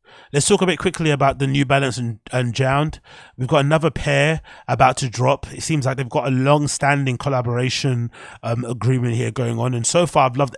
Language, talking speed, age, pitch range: English, 210 wpm, 30-49, 130-150 Hz